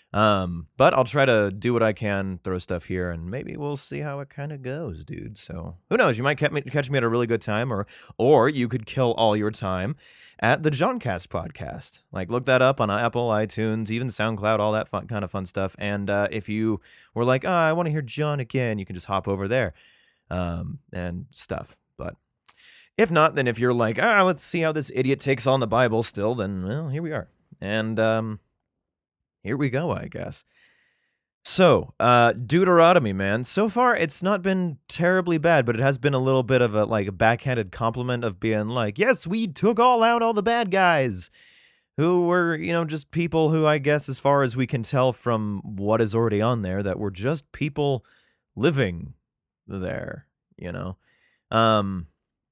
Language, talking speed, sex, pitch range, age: English, 210 wpm, male, 105-150 Hz, 20-39